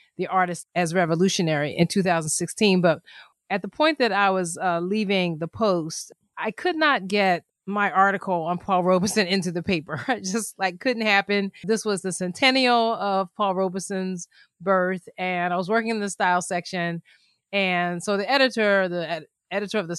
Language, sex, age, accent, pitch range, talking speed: English, female, 30-49, American, 175-215 Hz, 170 wpm